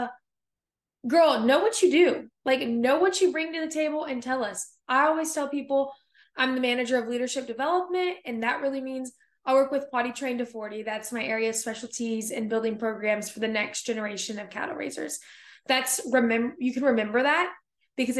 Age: 20-39